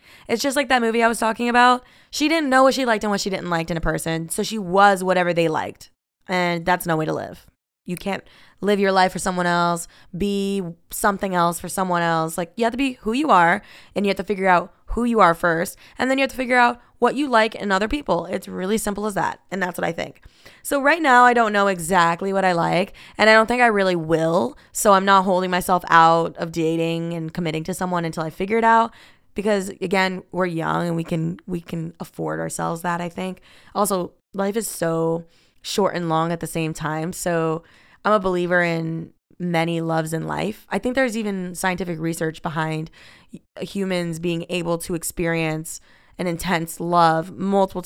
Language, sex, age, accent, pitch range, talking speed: English, female, 20-39, American, 170-210 Hz, 220 wpm